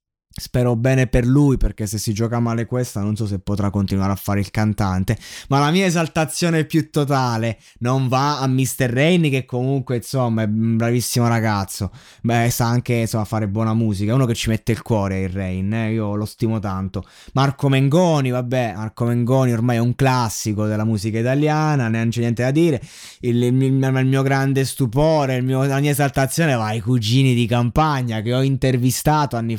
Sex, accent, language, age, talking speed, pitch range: male, native, Italian, 20-39, 195 wpm, 115-145 Hz